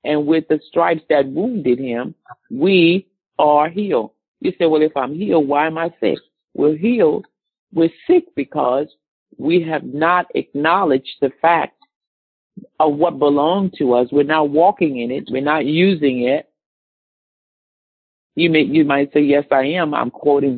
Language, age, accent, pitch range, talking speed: English, 50-69, American, 135-175 Hz, 160 wpm